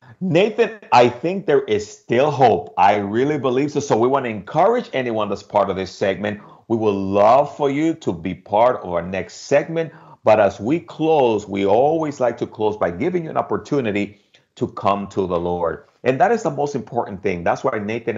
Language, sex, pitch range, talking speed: English, male, 105-145 Hz, 210 wpm